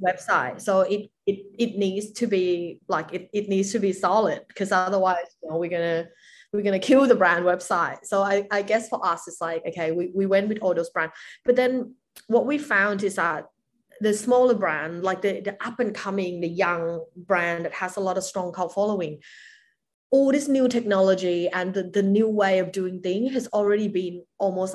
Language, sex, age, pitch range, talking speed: English, female, 20-39, 175-210 Hz, 210 wpm